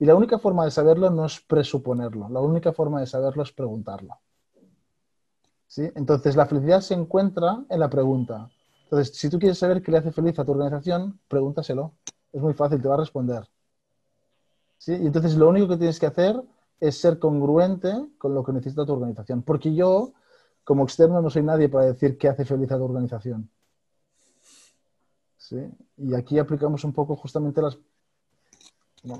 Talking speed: 180 wpm